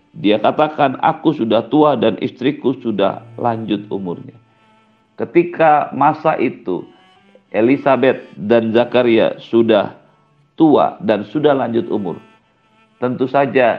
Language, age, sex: Indonesian, 50-69, male